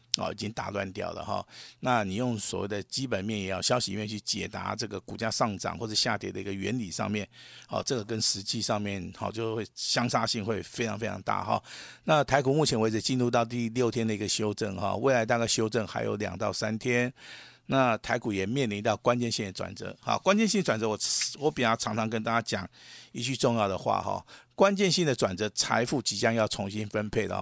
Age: 50-69